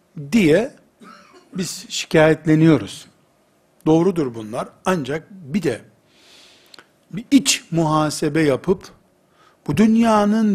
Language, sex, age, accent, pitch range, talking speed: Turkish, male, 60-79, native, 135-175 Hz, 80 wpm